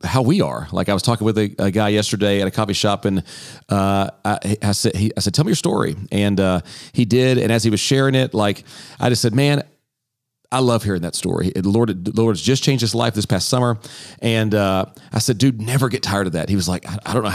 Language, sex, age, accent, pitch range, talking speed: English, male, 40-59, American, 105-135 Hz, 265 wpm